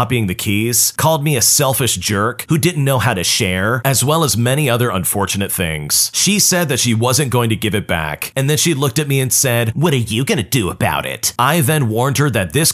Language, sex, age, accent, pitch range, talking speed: English, male, 40-59, American, 105-145 Hz, 250 wpm